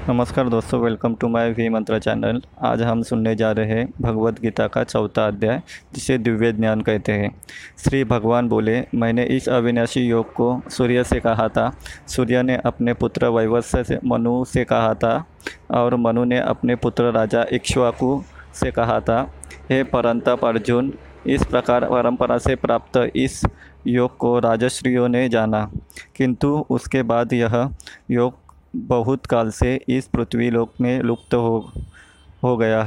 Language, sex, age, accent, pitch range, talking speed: Hindi, male, 20-39, native, 115-125 Hz, 155 wpm